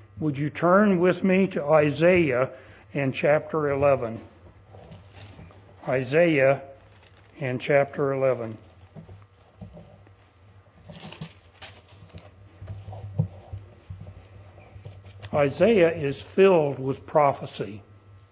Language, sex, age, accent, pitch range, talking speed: English, male, 60-79, American, 100-160 Hz, 60 wpm